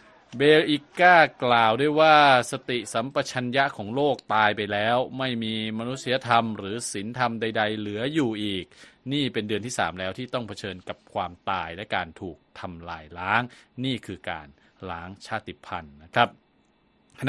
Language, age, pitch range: Thai, 20-39, 105-125 Hz